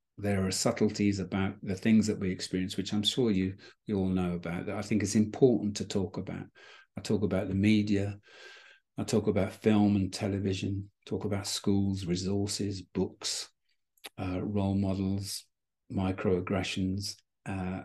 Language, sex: English, male